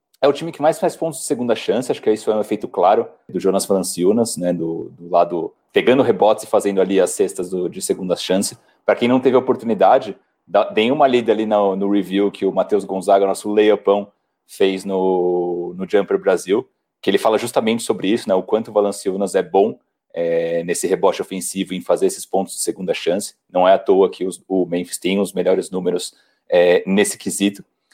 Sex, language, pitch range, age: male, Portuguese, 95-125 Hz, 40-59